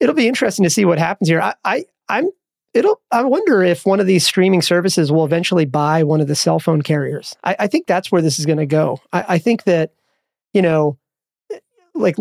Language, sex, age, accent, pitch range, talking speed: English, male, 30-49, American, 160-195 Hz, 230 wpm